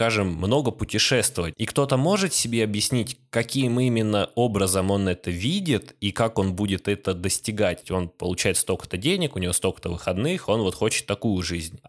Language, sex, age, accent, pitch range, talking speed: Russian, male, 20-39, native, 100-125 Hz, 160 wpm